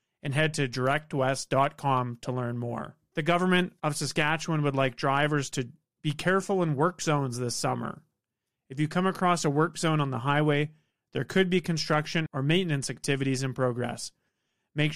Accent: American